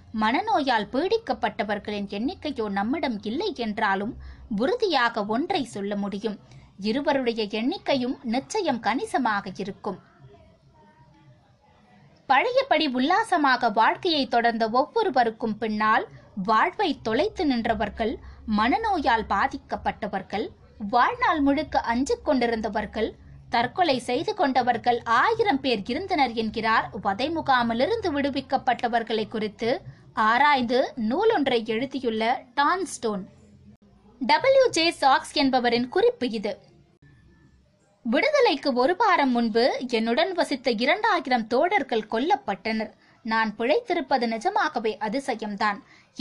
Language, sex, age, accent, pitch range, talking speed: Tamil, female, 20-39, native, 220-295 Hz, 80 wpm